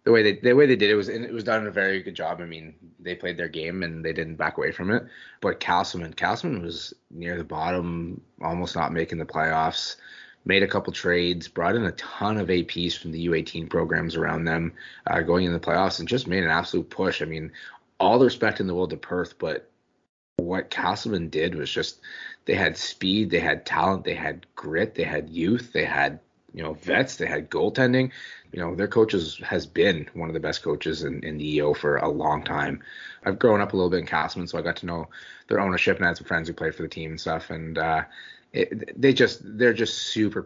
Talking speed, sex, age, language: 235 wpm, male, 20-39, English